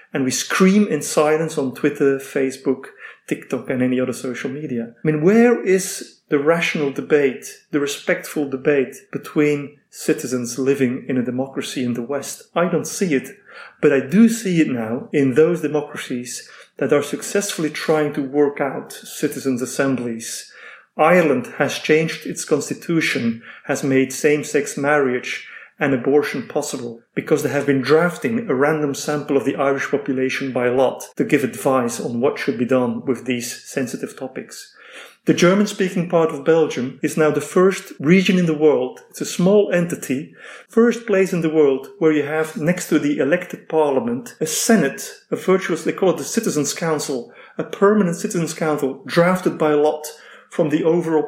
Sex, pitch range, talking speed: male, 135-175 Hz, 165 wpm